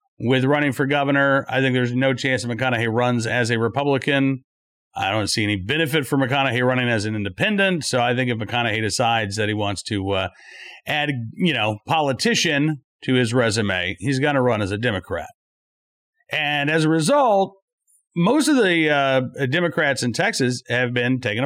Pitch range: 120-165 Hz